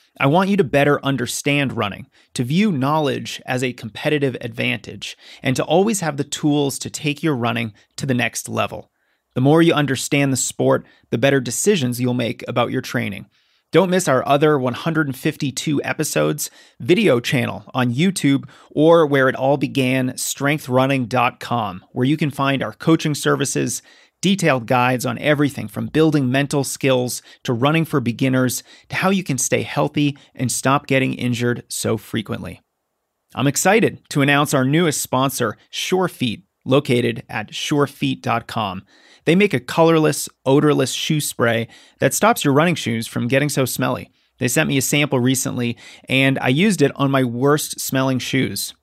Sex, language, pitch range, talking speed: male, English, 125-150 Hz, 160 wpm